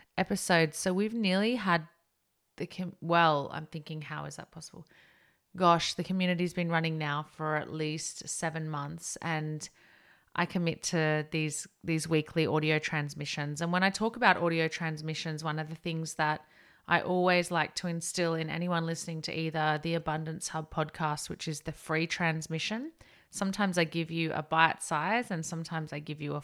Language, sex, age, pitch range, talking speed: English, female, 30-49, 155-180 Hz, 180 wpm